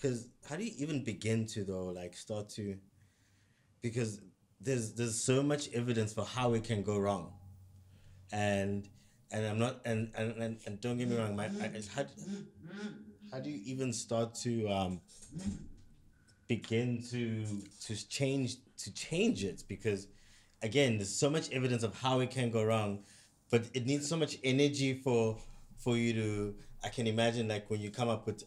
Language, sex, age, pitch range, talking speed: English, male, 20-39, 100-120 Hz, 175 wpm